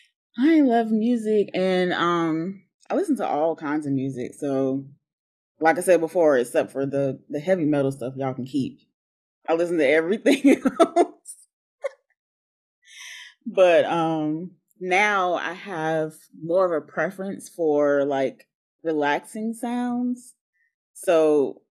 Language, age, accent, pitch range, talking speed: English, 20-39, American, 150-195 Hz, 125 wpm